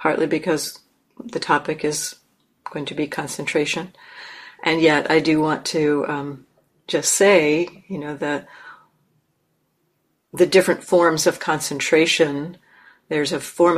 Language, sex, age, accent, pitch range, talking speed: English, female, 50-69, American, 145-170 Hz, 125 wpm